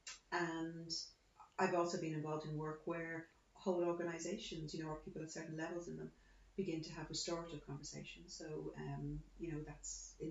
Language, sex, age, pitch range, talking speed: English, female, 30-49, 145-165 Hz, 175 wpm